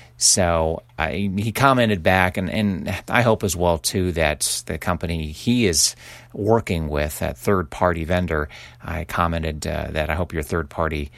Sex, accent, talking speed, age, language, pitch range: male, American, 160 wpm, 40-59, English, 80-100 Hz